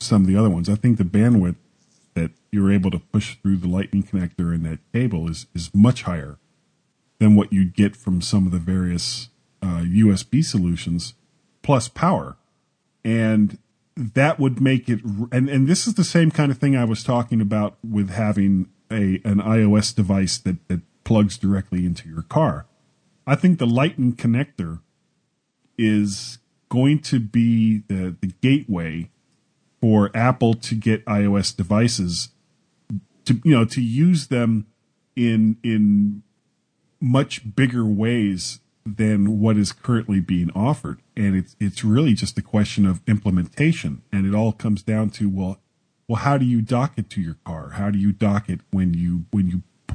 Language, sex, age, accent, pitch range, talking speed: English, male, 40-59, American, 95-120 Hz, 165 wpm